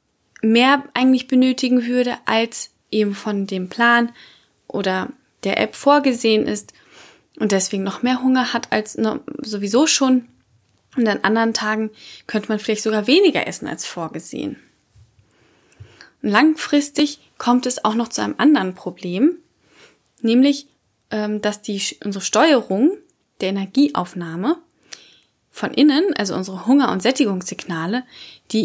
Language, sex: German, female